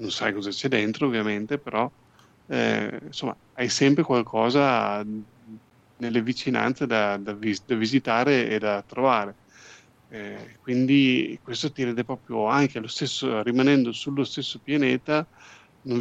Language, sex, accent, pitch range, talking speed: Italian, male, native, 110-130 Hz, 125 wpm